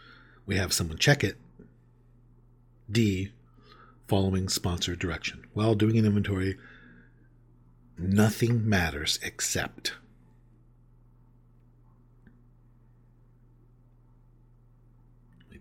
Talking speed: 65 wpm